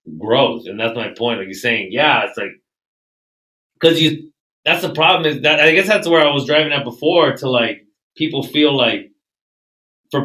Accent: American